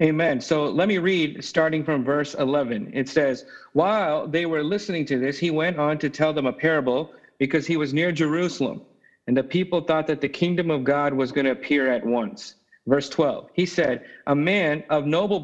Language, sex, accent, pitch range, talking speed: English, male, American, 150-195 Hz, 205 wpm